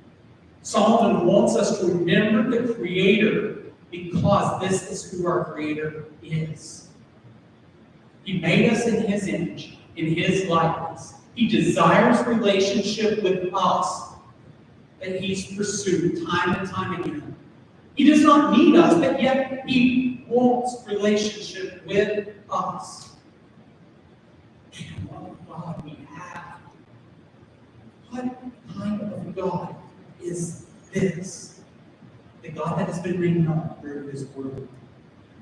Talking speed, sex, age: 115 wpm, male, 40-59